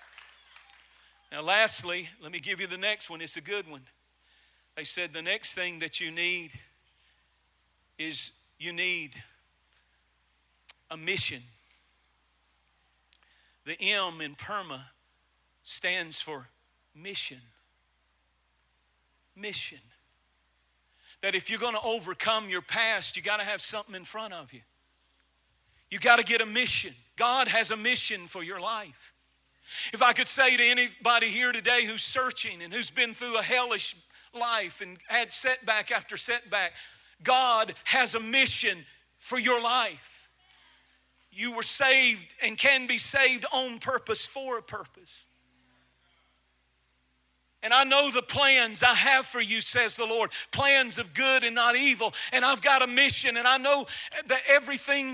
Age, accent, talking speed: 40-59, American, 145 wpm